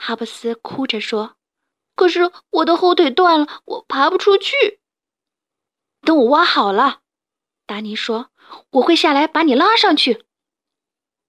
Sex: female